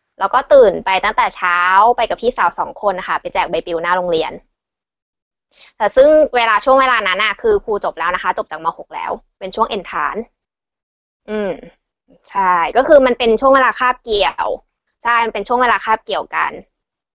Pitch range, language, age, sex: 195-255 Hz, Thai, 20-39, female